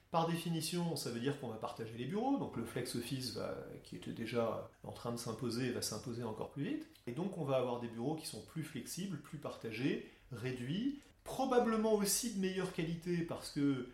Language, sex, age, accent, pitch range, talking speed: French, male, 30-49, French, 120-165 Hz, 205 wpm